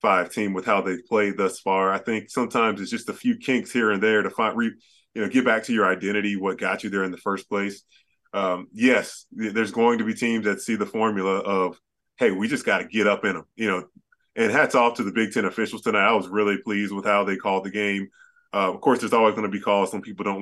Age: 20-39